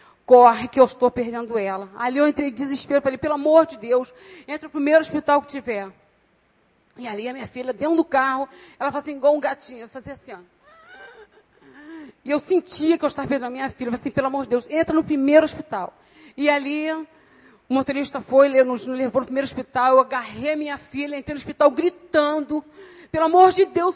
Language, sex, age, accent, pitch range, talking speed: Portuguese, female, 40-59, Brazilian, 275-350 Hz, 205 wpm